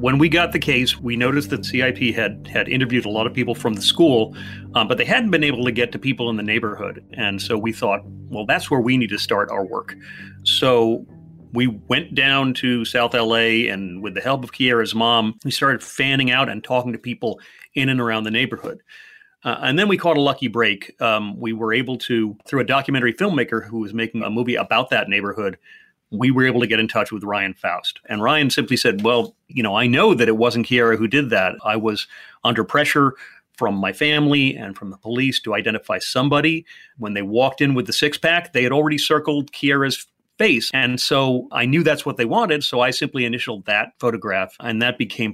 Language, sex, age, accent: English, male, 40-59, American